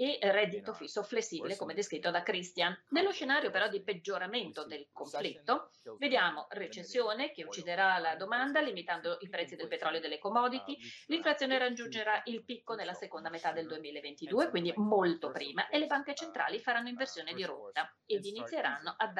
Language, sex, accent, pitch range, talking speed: English, female, Italian, 180-290 Hz, 165 wpm